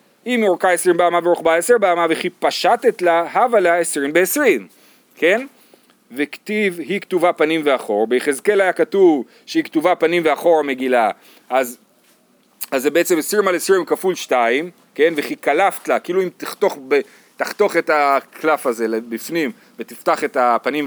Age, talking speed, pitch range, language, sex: 40-59, 145 wpm, 155-230 Hz, Hebrew, male